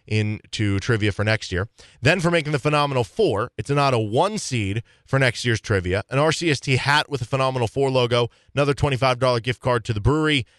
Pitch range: 115-140 Hz